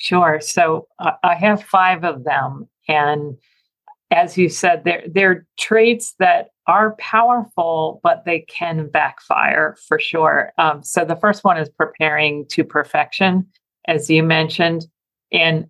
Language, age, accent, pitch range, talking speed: English, 50-69, American, 160-195 Hz, 140 wpm